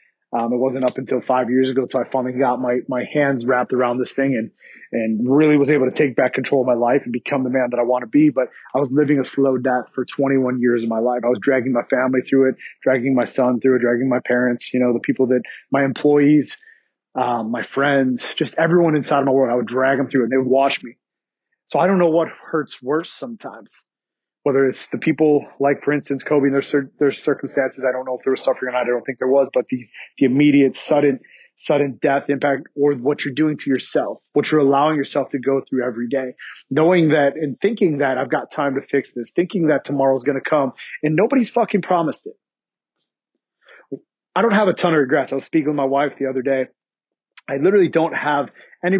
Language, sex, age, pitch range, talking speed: English, male, 30-49, 130-150 Hz, 240 wpm